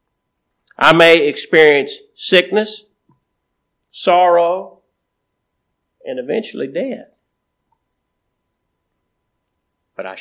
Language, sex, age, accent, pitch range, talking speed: English, male, 50-69, American, 140-190 Hz, 60 wpm